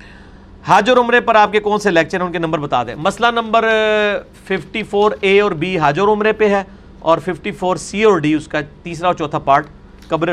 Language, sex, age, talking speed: Urdu, male, 50-69, 205 wpm